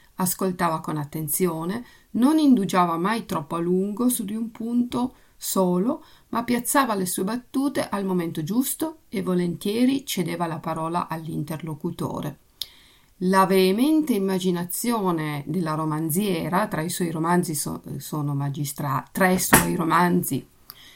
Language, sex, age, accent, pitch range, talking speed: Italian, female, 50-69, native, 160-215 Hz, 115 wpm